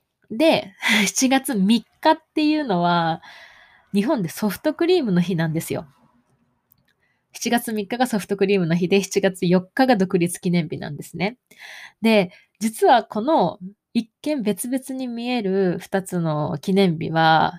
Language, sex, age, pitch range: Japanese, female, 20-39, 180-240 Hz